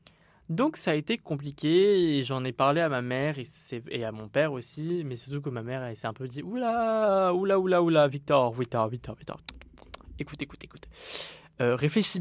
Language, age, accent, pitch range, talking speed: French, 20-39, French, 130-165 Hz, 225 wpm